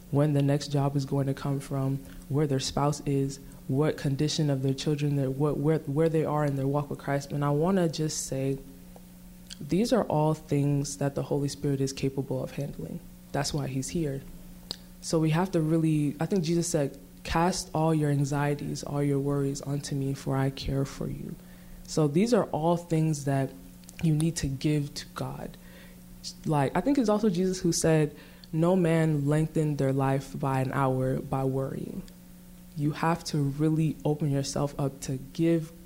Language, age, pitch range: English, 20-39, 140-160 Hz